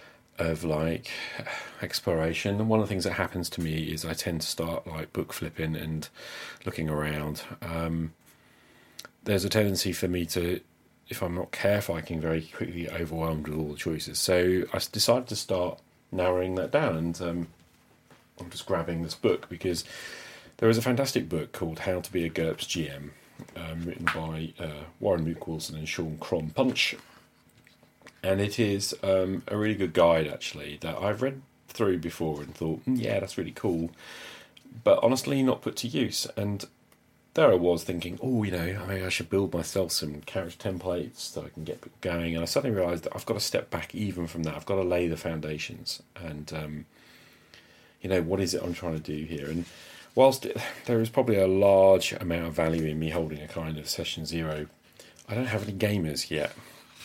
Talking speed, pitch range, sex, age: 195 wpm, 80-95 Hz, male, 40-59